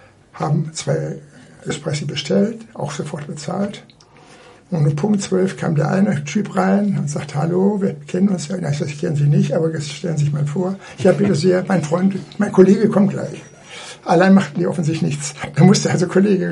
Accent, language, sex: German, German, male